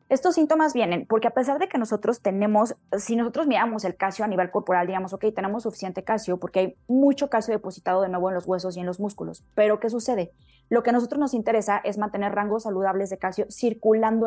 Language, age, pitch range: Spanish, 20-39, 185-225 Hz